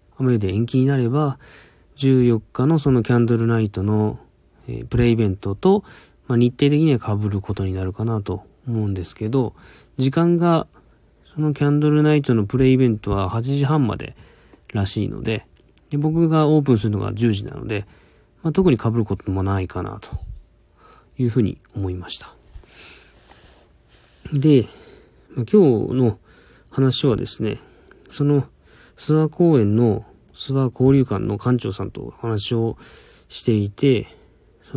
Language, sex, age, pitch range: Japanese, male, 40-59, 105-135 Hz